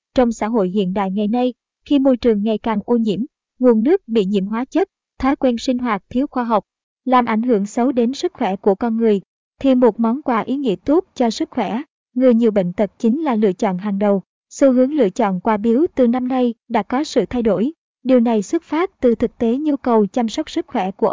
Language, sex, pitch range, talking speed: Vietnamese, male, 215-255 Hz, 240 wpm